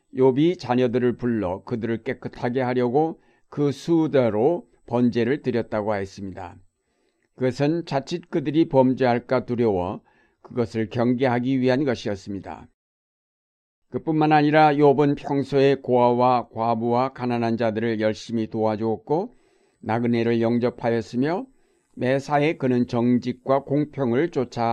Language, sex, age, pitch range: Korean, male, 60-79, 115-140 Hz